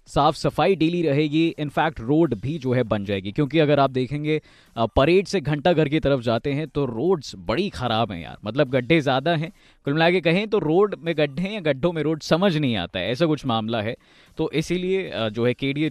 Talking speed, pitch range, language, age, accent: 215 wpm, 125-180 Hz, Hindi, 20-39, native